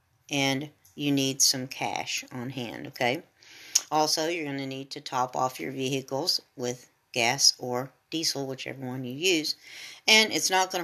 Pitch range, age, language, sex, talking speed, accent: 135-160 Hz, 50-69, English, female, 165 wpm, American